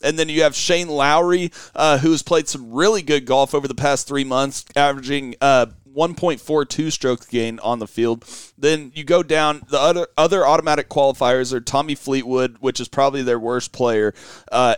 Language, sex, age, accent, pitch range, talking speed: English, male, 30-49, American, 135-170 Hz, 195 wpm